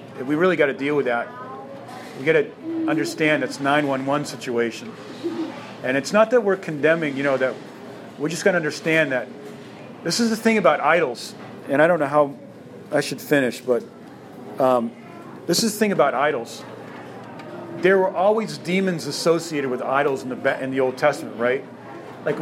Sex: male